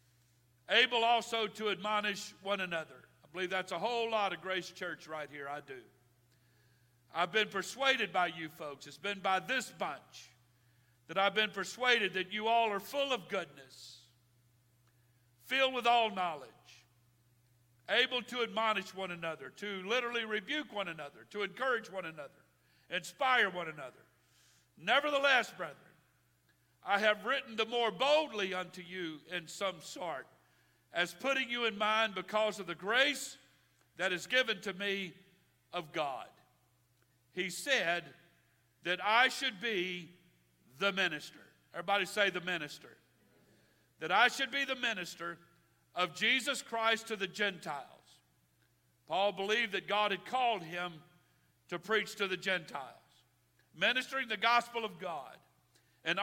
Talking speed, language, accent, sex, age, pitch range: 140 wpm, English, American, male, 50-69, 150-225 Hz